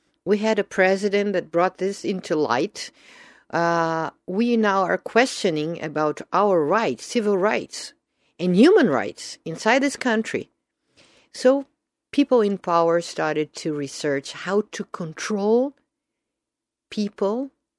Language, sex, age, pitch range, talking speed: English, female, 50-69, 165-220 Hz, 120 wpm